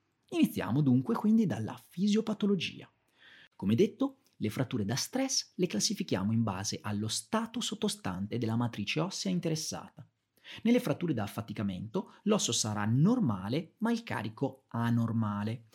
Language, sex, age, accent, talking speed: Italian, male, 30-49, native, 125 wpm